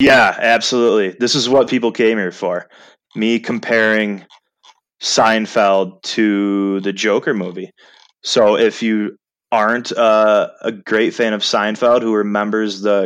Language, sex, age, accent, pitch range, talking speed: English, male, 20-39, American, 100-120 Hz, 135 wpm